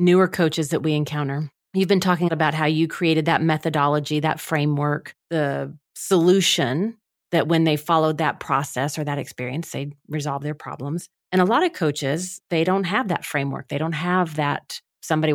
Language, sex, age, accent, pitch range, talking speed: English, female, 30-49, American, 150-180 Hz, 180 wpm